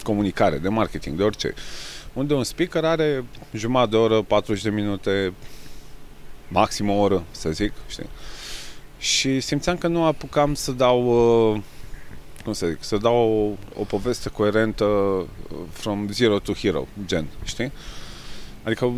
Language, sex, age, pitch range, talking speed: Romanian, male, 30-49, 100-125 Hz, 140 wpm